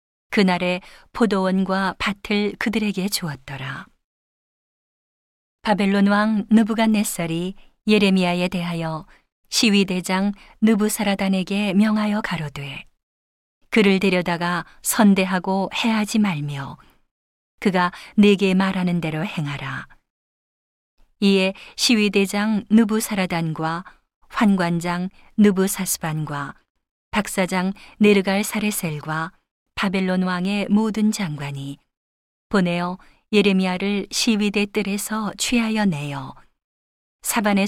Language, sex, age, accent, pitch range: Korean, female, 40-59, native, 170-205 Hz